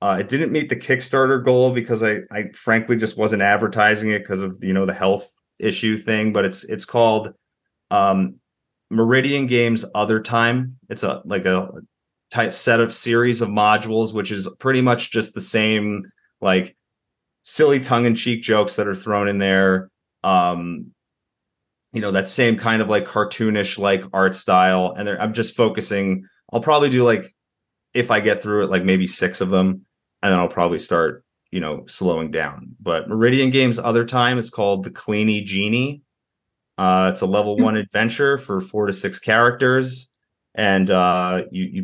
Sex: male